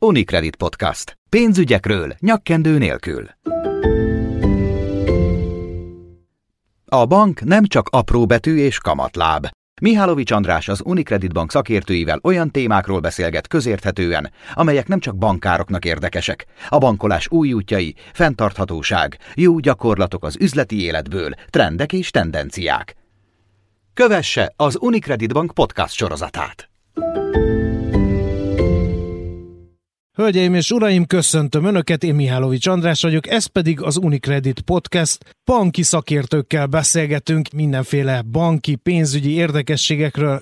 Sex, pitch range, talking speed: male, 120-170 Hz, 100 wpm